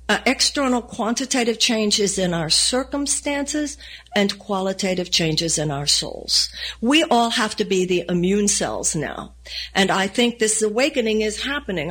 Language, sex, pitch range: English, female, 165-220 Hz